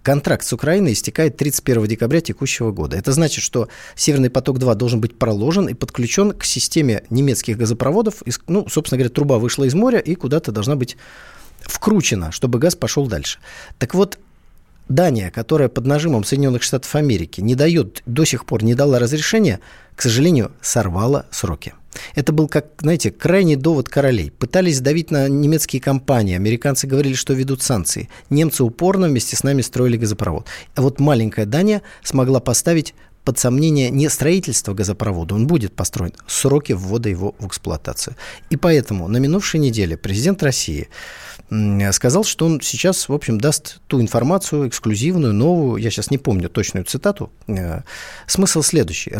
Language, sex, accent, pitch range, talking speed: Russian, male, native, 110-155 Hz, 155 wpm